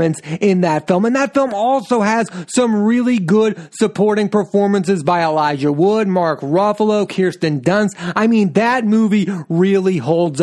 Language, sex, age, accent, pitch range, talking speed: English, male, 30-49, American, 170-210 Hz, 150 wpm